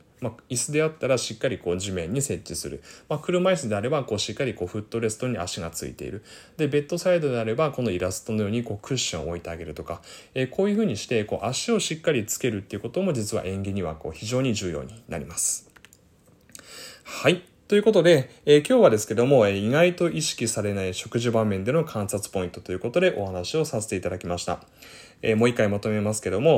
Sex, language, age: male, Japanese, 20-39